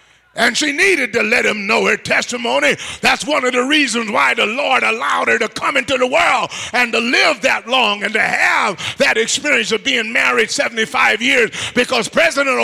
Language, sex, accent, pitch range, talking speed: English, male, American, 230-310 Hz, 195 wpm